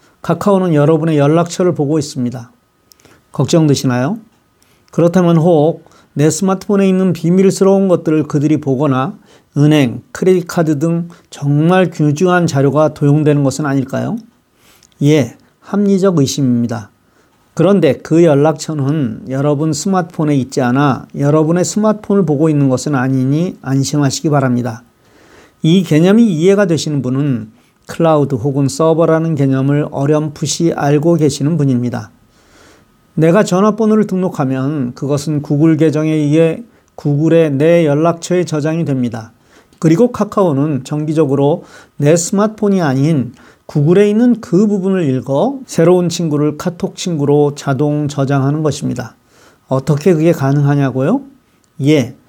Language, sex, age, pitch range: Korean, male, 40-59, 140-175 Hz